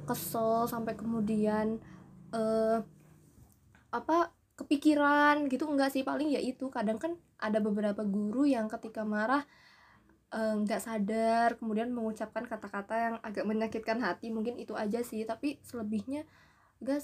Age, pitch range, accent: 20-39, 210-260 Hz, native